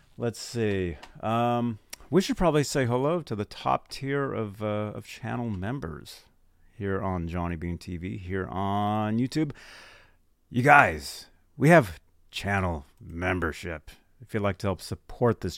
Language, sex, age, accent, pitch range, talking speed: English, male, 40-59, American, 95-140 Hz, 145 wpm